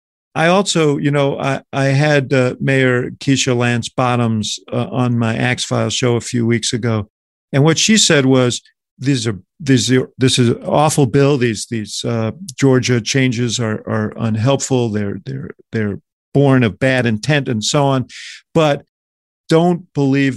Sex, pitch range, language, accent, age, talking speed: male, 115-140 Hz, English, American, 50-69, 170 wpm